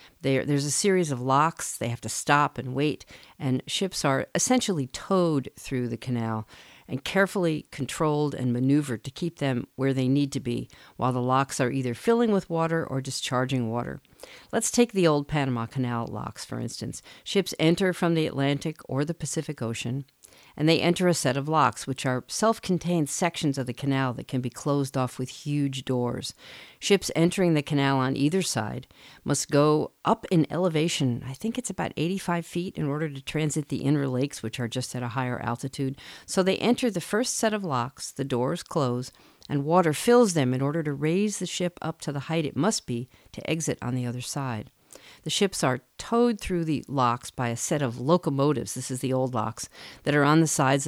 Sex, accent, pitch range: female, American, 125-165 Hz